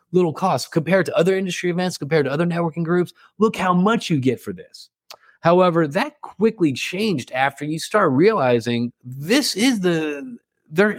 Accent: American